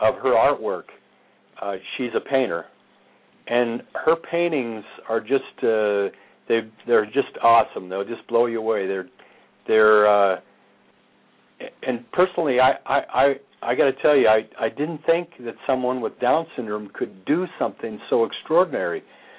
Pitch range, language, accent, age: 110-135 Hz, English, American, 60-79